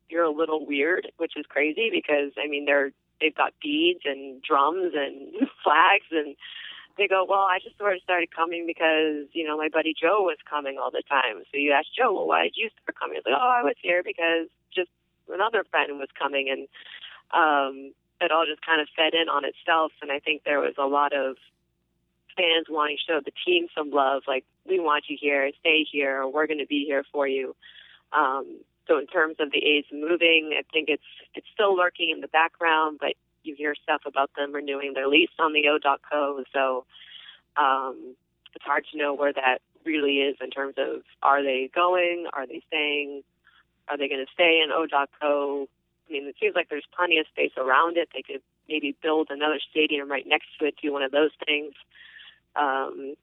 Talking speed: 210 wpm